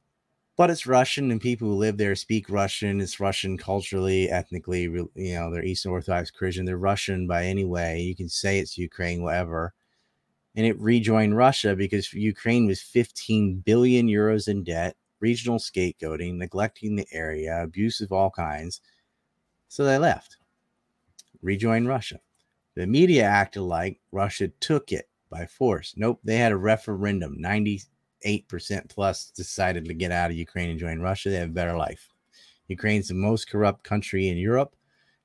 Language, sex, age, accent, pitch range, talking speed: English, male, 30-49, American, 90-110 Hz, 165 wpm